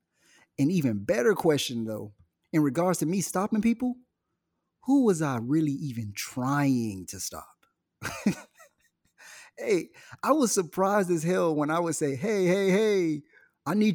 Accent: American